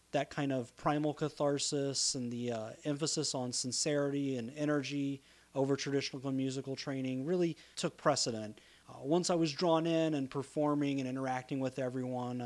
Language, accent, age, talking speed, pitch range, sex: English, American, 30-49, 155 wpm, 130-160 Hz, male